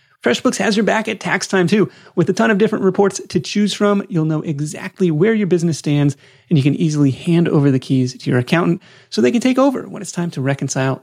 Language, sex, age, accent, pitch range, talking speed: English, male, 30-49, American, 130-190 Hz, 245 wpm